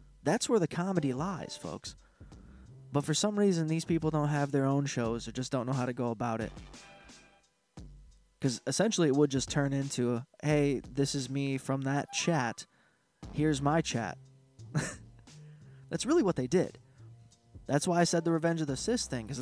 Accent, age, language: American, 20-39, English